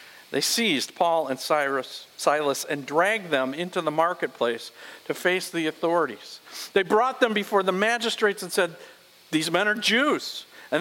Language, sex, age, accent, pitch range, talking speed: English, male, 50-69, American, 165-225 Hz, 155 wpm